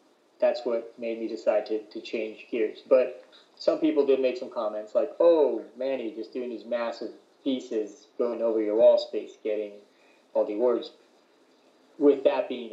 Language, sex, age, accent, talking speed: English, male, 30-49, American, 170 wpm